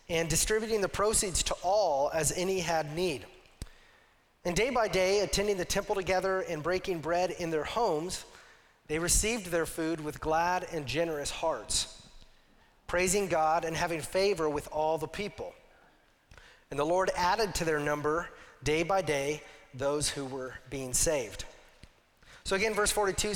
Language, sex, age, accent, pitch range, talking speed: English, male, 30-49, American, 160-190 Hz, 155 wpm